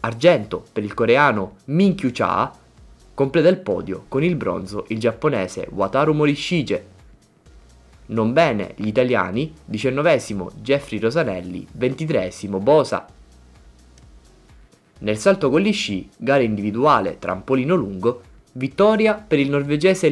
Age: 20-39